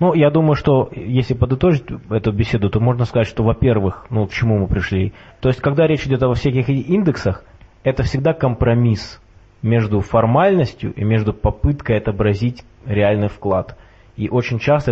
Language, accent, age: Russian, native, 20-39